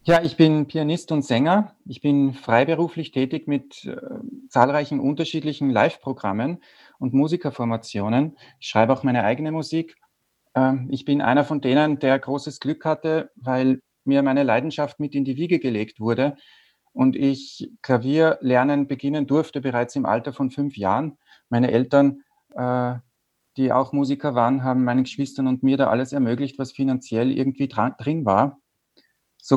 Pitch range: 130-145 Hz